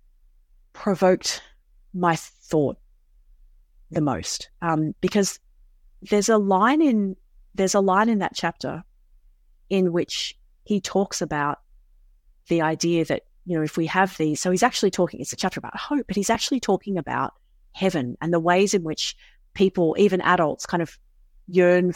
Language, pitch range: English, 160-200 Hz